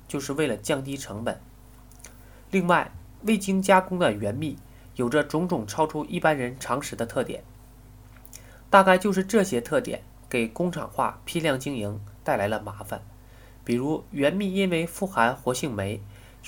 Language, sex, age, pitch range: Chinese, male, 20-39, 115-160 Hz